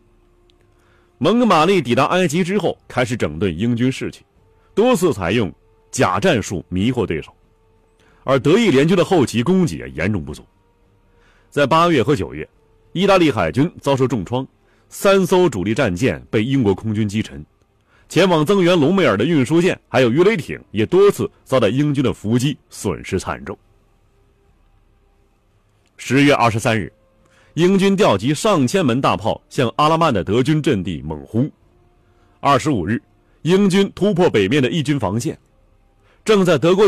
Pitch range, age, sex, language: 100-155 Hz, 30-49, male, Chinese